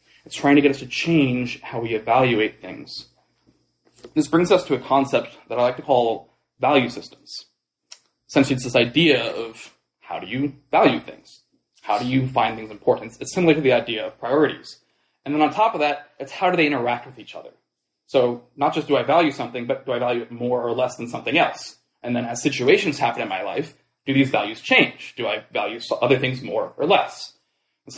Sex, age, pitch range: male, 20-39, 120-150 Hz